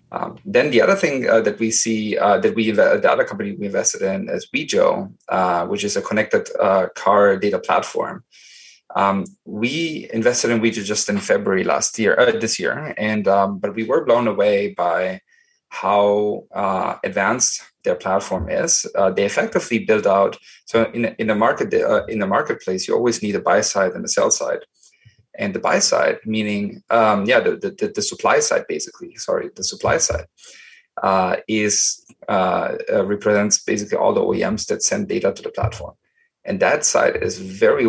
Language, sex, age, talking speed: English, male, 20-39, 185 wpm